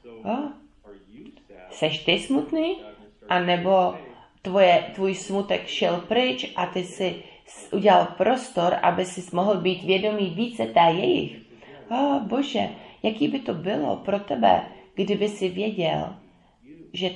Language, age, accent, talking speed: English, 30-49, Czech, 125 wpm